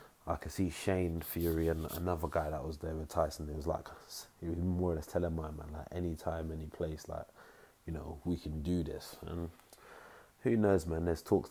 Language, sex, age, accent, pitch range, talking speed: English, male, 20-39, British, 80-85 Hz, 225 wpm